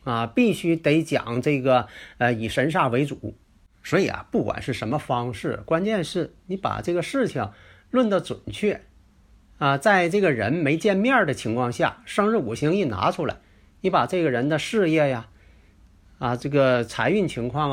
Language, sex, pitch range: Chinese, male, 95-160 Hz